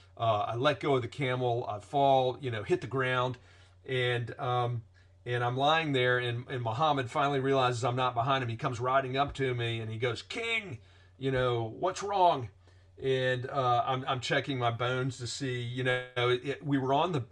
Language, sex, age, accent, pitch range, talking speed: English, male, 40-59, American, 115-140 Hz, 210 wpm